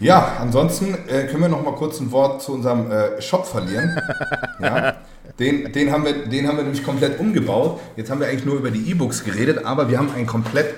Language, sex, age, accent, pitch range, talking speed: German, male, 40-59, German, 105-135 Hz, 210 wpm